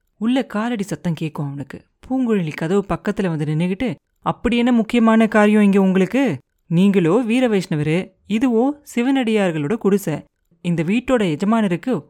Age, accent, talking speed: 30-49, native, 120 wpm